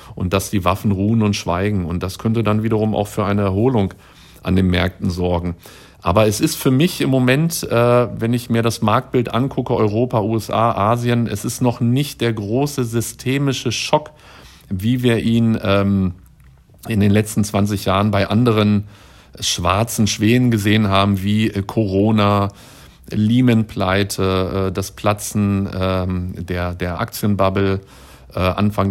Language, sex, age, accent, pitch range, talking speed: German, male, 50-69, German, 95-115 Hz, 135 wpm